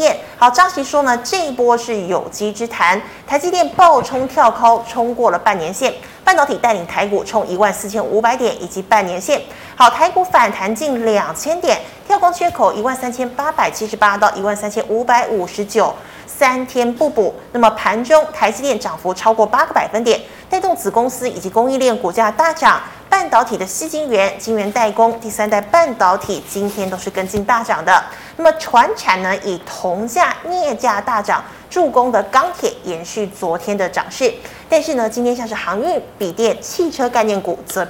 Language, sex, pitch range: Chinese, female, 205-280 Hz